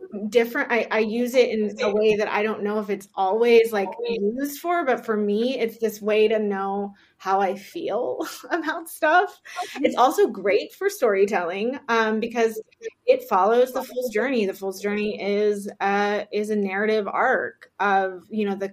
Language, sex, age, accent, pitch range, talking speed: English, female, 20-39, American, 195-240 Hz, 180 wpm